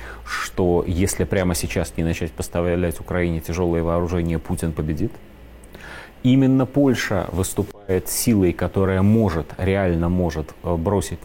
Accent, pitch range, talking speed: native, 85-115 Hz, 110 wpm